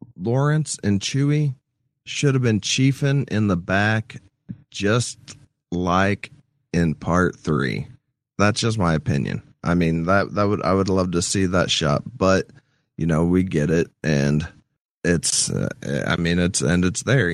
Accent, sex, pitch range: American, male, 90-120 Hz